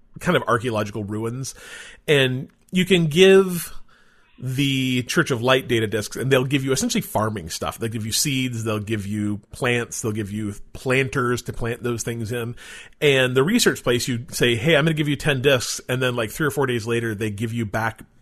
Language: English